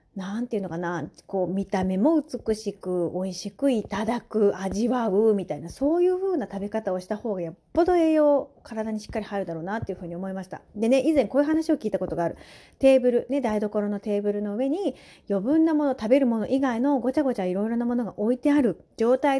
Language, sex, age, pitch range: Japanese, female, 30-49, 190-265 Hz